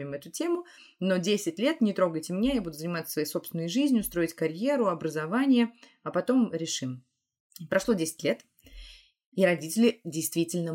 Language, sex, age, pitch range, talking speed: Russian, female, 20-39, 155-200 Hz, 145 wpm